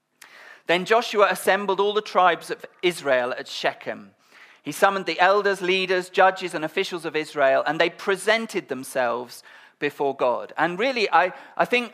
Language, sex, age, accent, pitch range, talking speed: English, male, 40-59, British, 150-195 Hz, 155 wpm